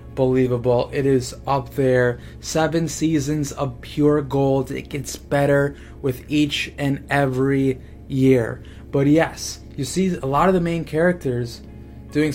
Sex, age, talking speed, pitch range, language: male, 20-39, 140 wpm, 125-140 Hz, English